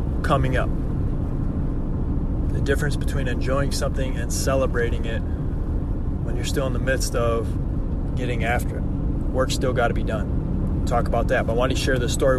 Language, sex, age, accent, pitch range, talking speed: English, male, 20-39, American, 90-140 Hz, 175 wpm